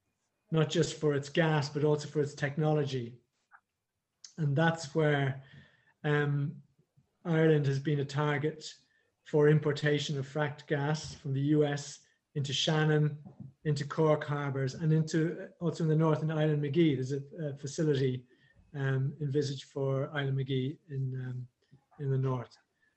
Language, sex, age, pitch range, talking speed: English, male, 30-49, 140-160 Hz, 140 wpm